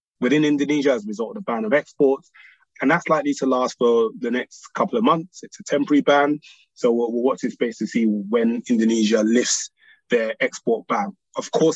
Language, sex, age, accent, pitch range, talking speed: English, male, 20-39, British, 125-180 Hz, 210 wpm